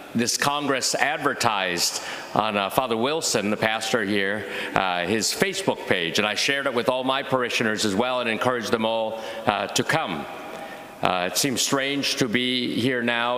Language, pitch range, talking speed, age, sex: English, 110-135 Hz, 175 wpm, 50-69, male